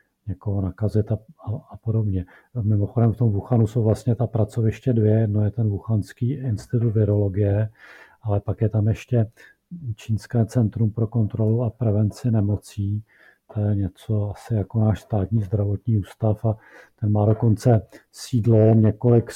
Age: 50-69